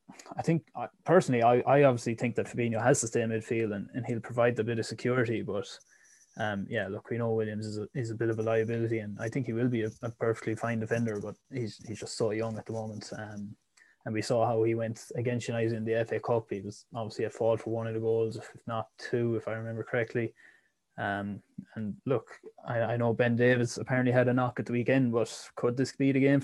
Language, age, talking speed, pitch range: English, 20-39, 245 wpm, 110-120 Hz